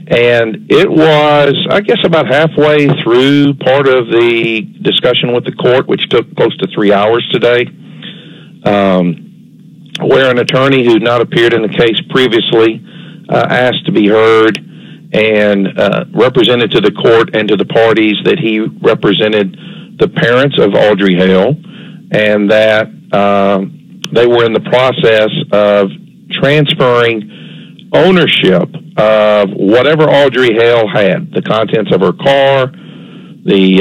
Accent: American